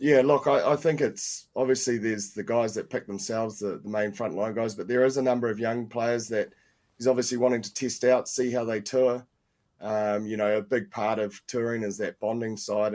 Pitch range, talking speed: 100-115 Hz, 230 wpm